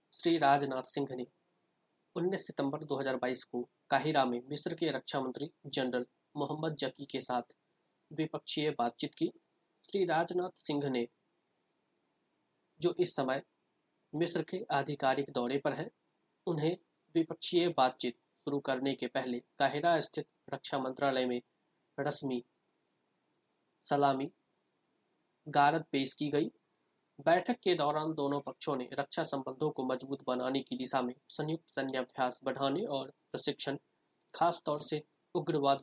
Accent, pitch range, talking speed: native, 130-160 Hz, 125 wpm